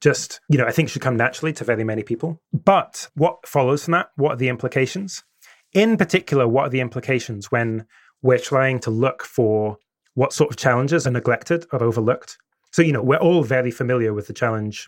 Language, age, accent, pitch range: English, 20-39, British, 115-150 Hz